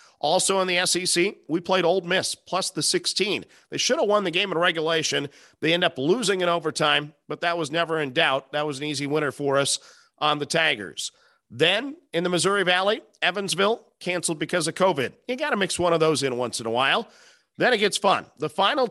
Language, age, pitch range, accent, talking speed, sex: English, 40-59, 165-205 Hz, American, 220 wpm, male